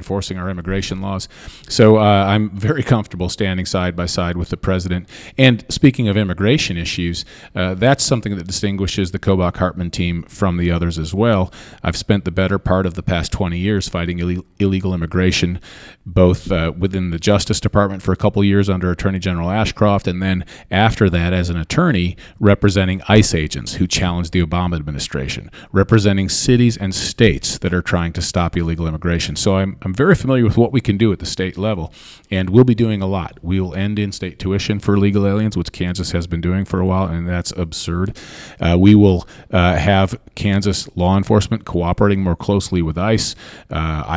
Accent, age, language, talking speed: American, 40-59, English, 190 wpm